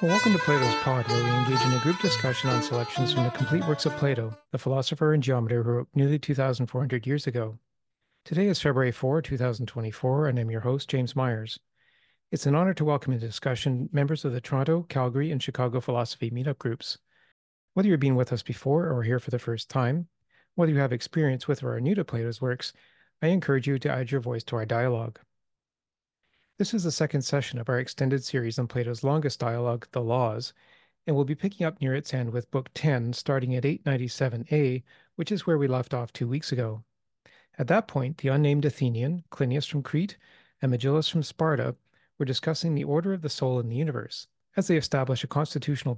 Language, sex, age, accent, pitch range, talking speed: English, male, 40-59, American, 125-150 Hz, 205 wpm